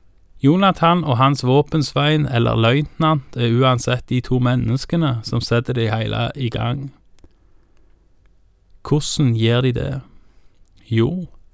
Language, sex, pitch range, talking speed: Danish, male, 115-140 Hz, 120 wpm